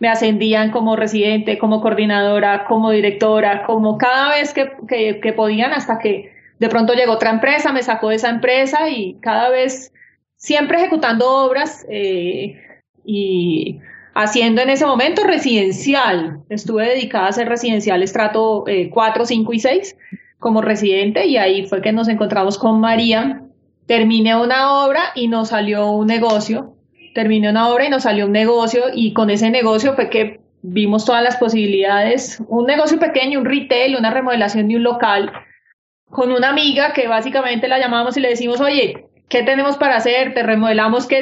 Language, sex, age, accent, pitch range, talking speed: Spanish, female, 30-49, Colombian, 215-255 Hz, 165 wpm